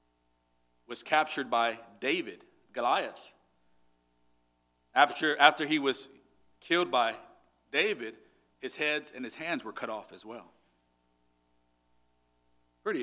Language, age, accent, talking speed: English, 40-59, American, 105 wpm